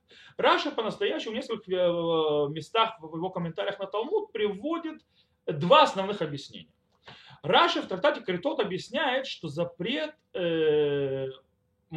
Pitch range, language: 165-280 Hz, Russian